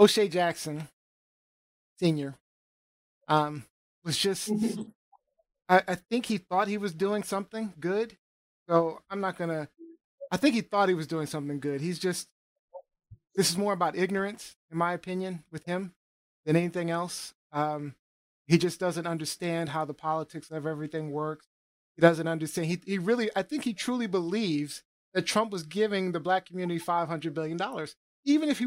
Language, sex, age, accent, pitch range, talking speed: English, male, 30-49, American, 155-195 Hz, 165 wpm